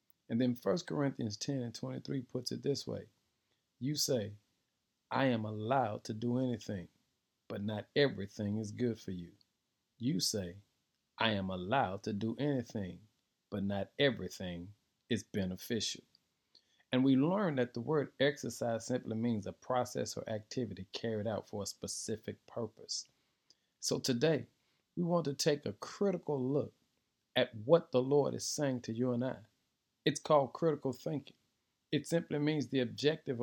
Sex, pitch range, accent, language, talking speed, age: male, 110-150 Hz, American, English, 155 wpm, 40-59